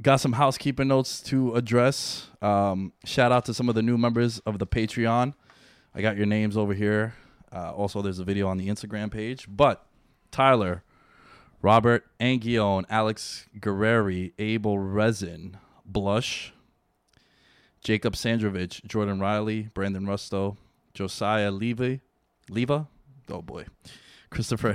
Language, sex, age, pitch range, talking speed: English, male, 20-39, 105-125 Hz, 130 wpm